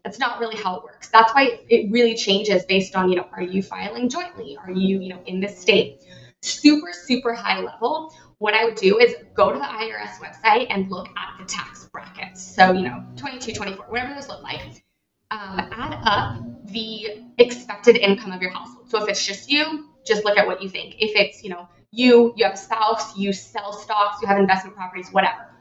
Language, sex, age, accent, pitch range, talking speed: English, female, 20-39, American, 190-235 Hz, 215 wpm